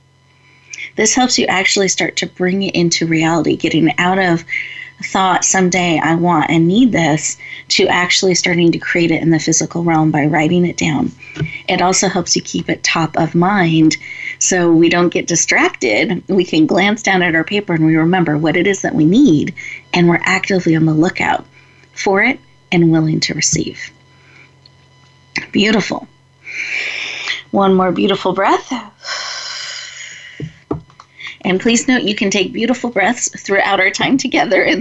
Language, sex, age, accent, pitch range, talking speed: English, female, 30-49, American, 165-205 Hz, 160 wpm